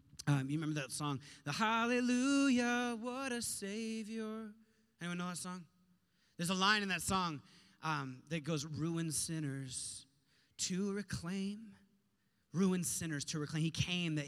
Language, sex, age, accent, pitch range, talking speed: English, male, 30-49, American, 130-175 Hz, 145 wpm